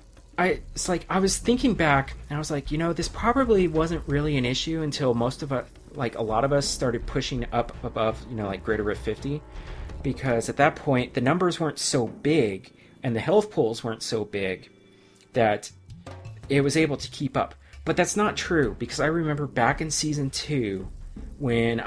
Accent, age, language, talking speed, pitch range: American, 30-49, English, 200 wpm, 110-145 Hz